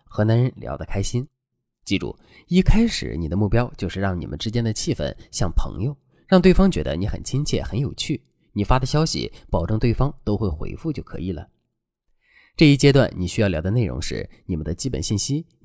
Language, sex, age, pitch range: Chinese, male, 20-39, 95-140 Hz